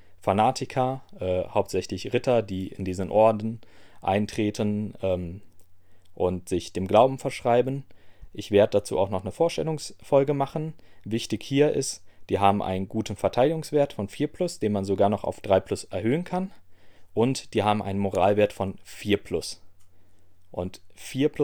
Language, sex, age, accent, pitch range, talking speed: German, male, 30-49, German, 95-110 Hz, 140 wpm